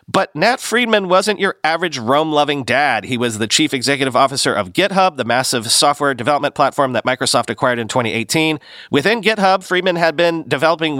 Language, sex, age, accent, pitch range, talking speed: English, male, 40-59, American, 125-170 Hz, 175 wpm